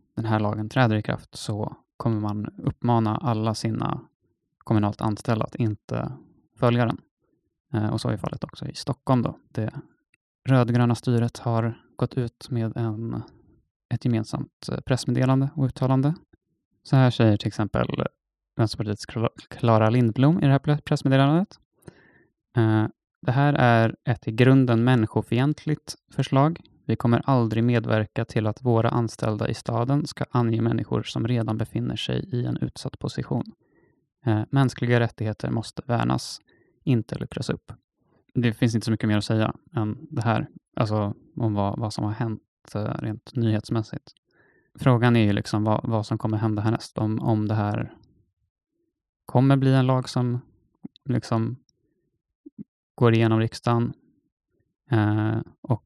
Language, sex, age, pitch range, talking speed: Swedish, male, 20-39, 110-130 Hz, 140 wpm